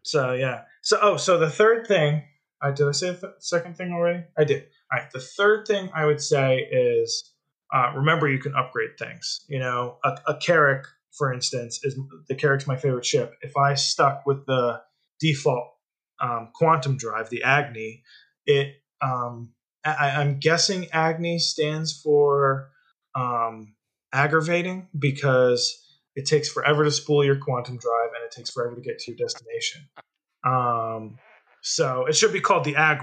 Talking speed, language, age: 160 wpm, English, 20-39